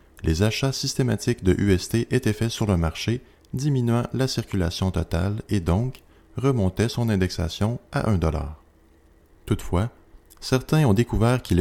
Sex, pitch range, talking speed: male, 80-115 Hz, 135 wpm